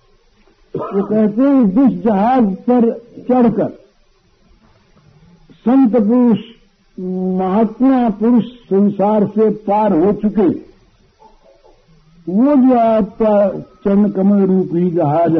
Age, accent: 60-79, native